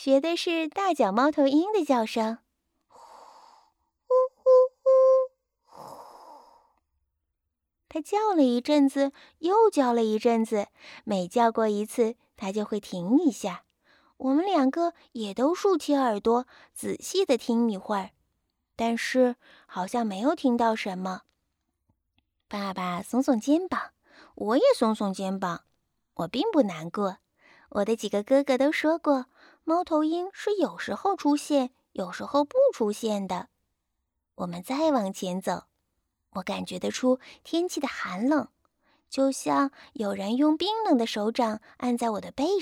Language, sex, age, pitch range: Chinese, female, 20-39, 210-295 Hz